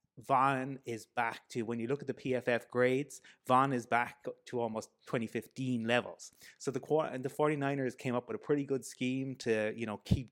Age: 30-49